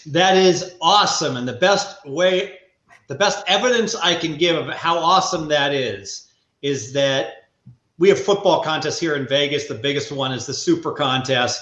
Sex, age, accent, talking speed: male, 40-59, American, 175 wpm